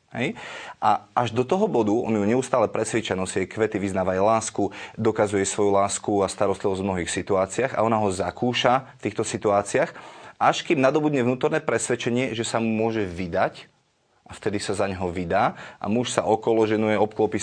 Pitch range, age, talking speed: 105-135 Hz, 30-49, 170 wpm